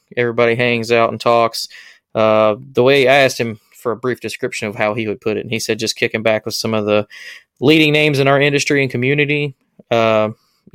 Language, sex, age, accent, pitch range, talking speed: English, male, 20-39, American, 110-125 Hz, 220 wpm